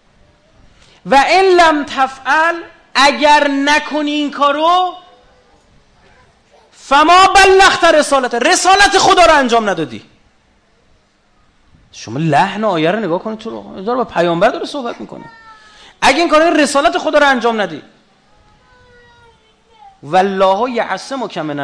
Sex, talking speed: male, 100 wpm